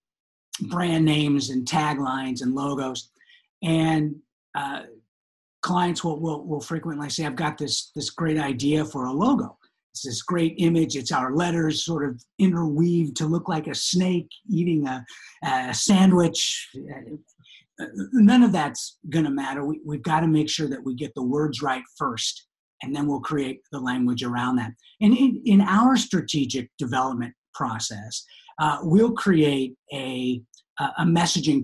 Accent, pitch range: American, 130-170 Hz